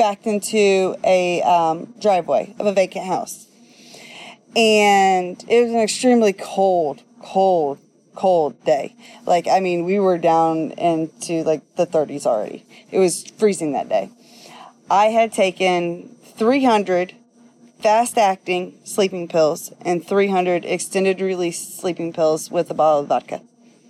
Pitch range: 180-230 Hz